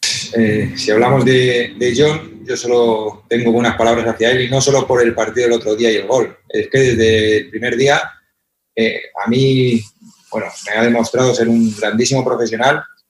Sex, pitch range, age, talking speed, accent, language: male, 110-130 Hz, 30-49, 190 wpm, Spanish, Spanish